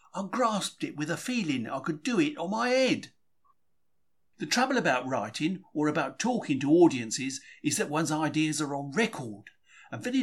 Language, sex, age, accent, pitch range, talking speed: English, male, 50-69, British, 135-230 Hz, 180 wpm